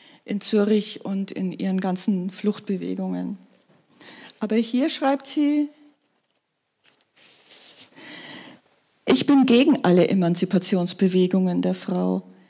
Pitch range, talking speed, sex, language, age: 195-255 Hz, 85 wpm, female, German, 40-59